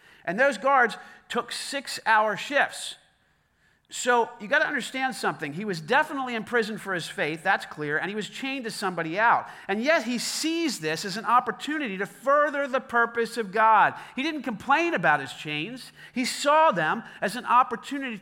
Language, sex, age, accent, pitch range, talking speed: English, male, 40-59, American, 160-255 Hz, 180 wpm